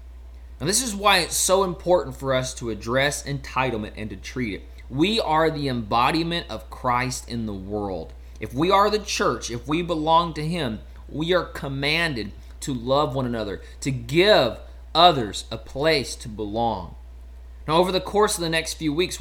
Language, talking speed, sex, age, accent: English, 180 wpm, male, 20-39, American